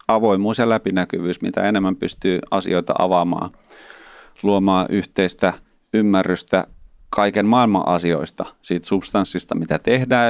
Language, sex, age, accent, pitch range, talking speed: Finnish, male, 30-49, native, 85-100 Hz, 105 wpm